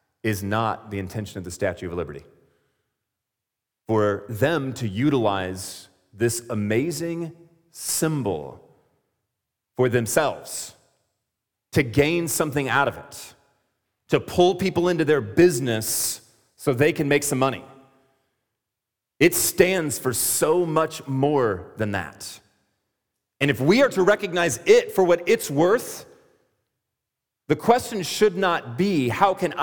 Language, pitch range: English, 105-150 Hz